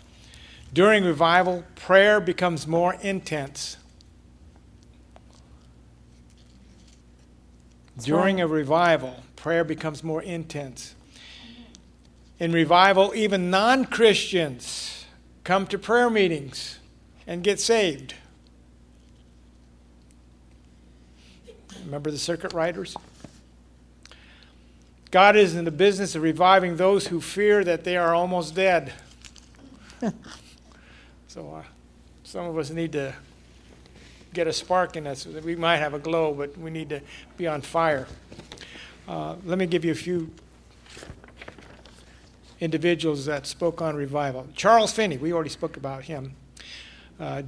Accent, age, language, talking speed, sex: American, 50-69, English, 110 wpm, male